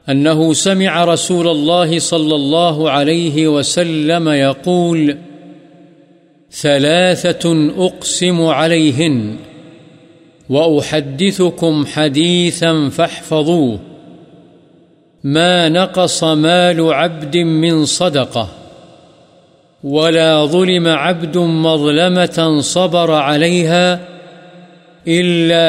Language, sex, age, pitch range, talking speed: Urdu, male, 50-69, 155-175 Hz, 65 wpm